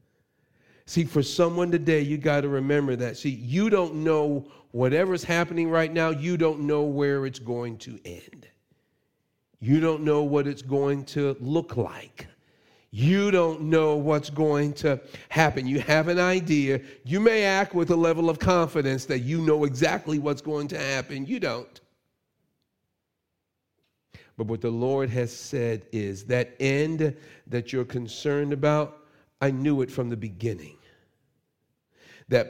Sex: male